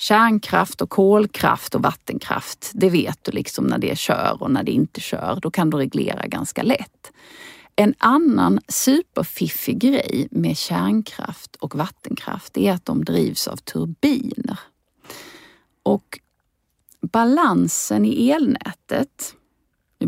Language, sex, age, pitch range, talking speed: Swedish, female, 40-59, 185-255 Hz, 125 wpm